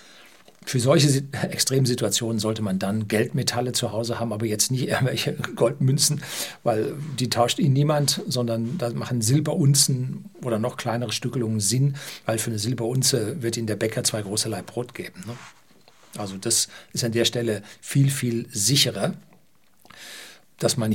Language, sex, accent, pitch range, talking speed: German, male, German, 110-140 Hz, 150 wpm